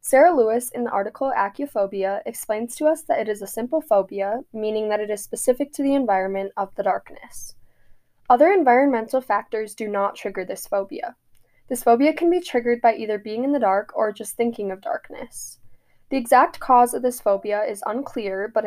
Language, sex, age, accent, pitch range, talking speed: English, female, 10-29, American, 210-260 Hz, 190 wpm